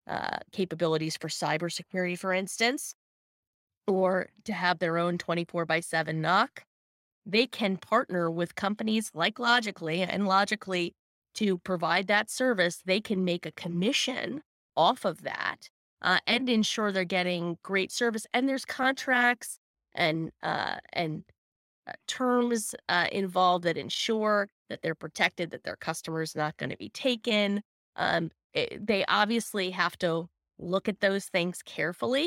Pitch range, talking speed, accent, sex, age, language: 170-215 Hz, 145 wpm, American, female, 30-49, English